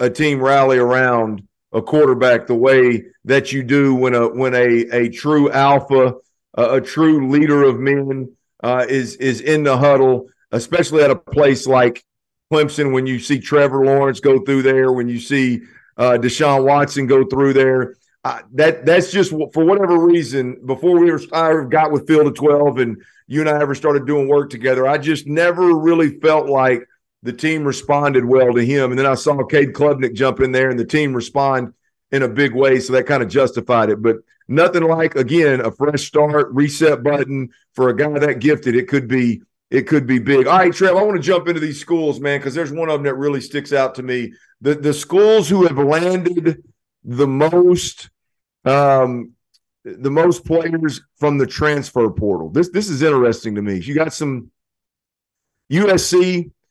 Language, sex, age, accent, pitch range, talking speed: English, male, 50-69, American, 130-150 Hz, 195 wpm